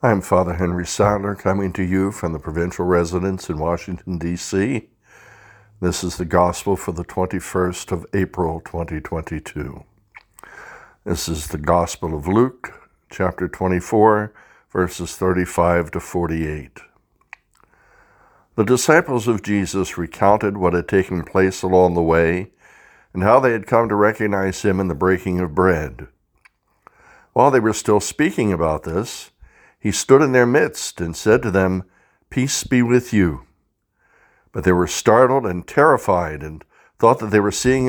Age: 60-79